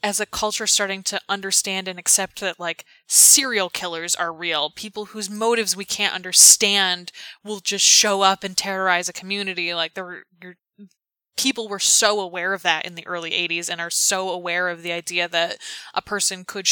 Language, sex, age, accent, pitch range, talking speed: English, female, 10-29, American, 180-210 Hz, 185 wpm